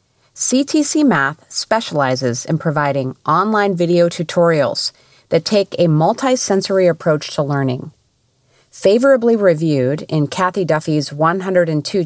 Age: 40-59